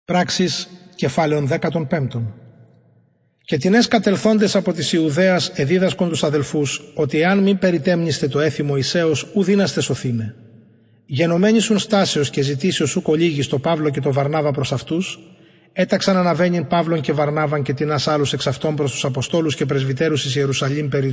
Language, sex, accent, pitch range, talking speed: English, male, Greek, 145-180 Hz, 155 wpm